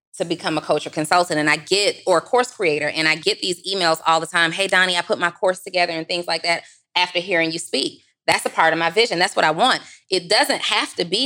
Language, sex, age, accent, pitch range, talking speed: English, female, 20-39, American, 160-190 Hz, 270 wpm